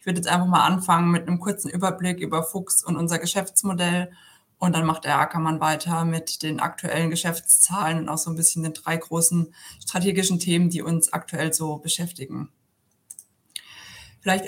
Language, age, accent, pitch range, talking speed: German, 20-39, German, 165-190 Hz, 170 wpm